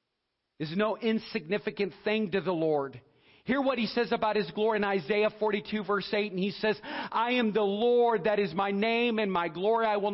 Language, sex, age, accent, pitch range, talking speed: English, male, 40-59, American, 165-220 Hz, 205 wpm